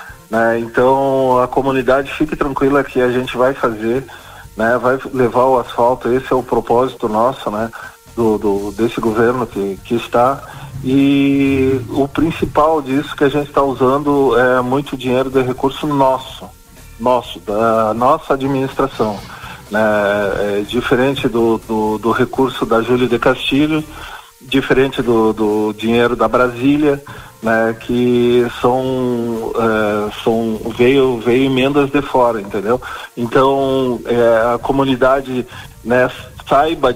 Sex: male